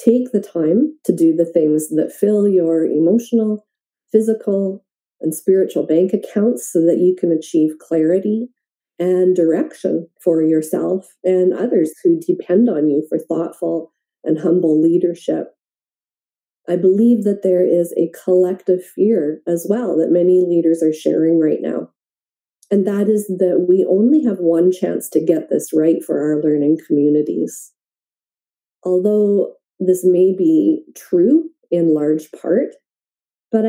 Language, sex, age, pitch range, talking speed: English, female, 40-59, 170-210 Hz, 145 wpm